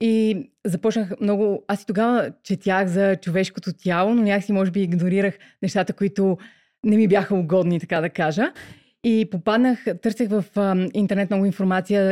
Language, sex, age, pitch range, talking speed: Bulgarian, female, 20-39, 180-210 Hz, 160 wpm